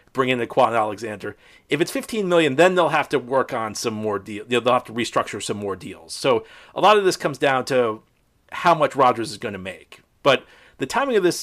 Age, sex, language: 40-59, male, English